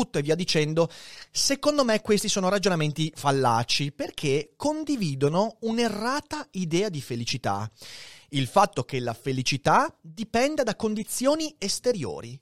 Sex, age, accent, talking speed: male, 30-49, native, 115 wpm